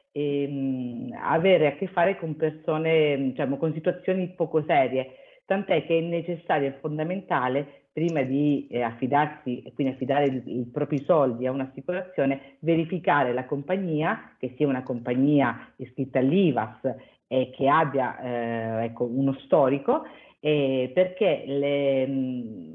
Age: 50-69